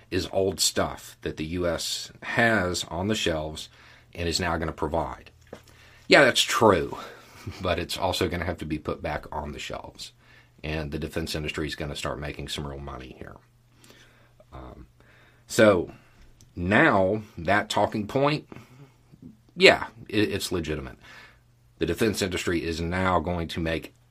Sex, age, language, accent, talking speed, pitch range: male, 40-59, English, American, 155 wpm, 85-120 Hz